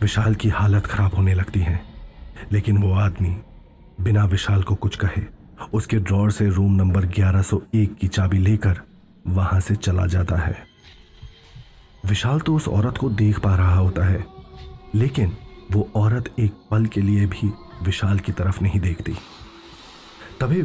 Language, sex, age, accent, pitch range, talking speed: Hindi, male, 30-49, native, 95-110 Hz, 155 wpm